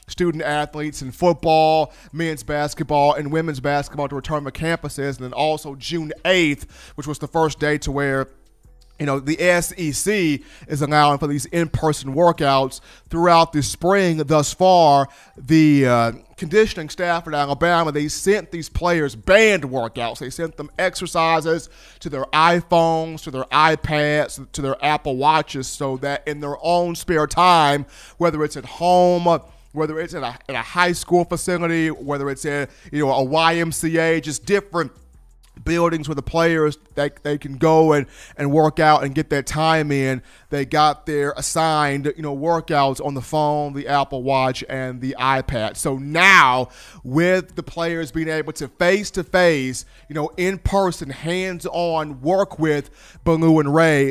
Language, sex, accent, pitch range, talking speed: English, male, American, 140-170 Hz, 165 wpm